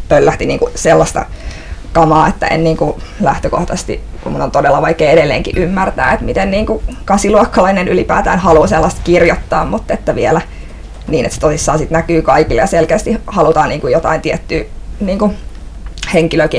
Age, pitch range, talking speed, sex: 20-39, 155-175 Hz, 150 wpm, female